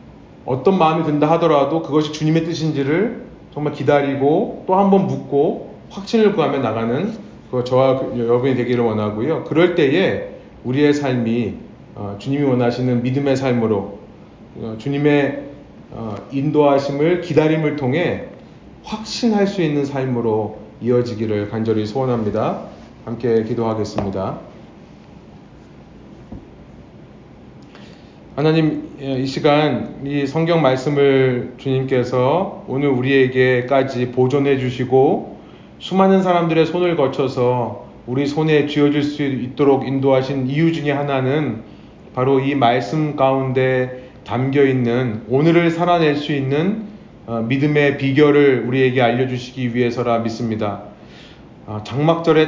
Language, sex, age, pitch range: Korean, male, 30-49, 125-150 Hz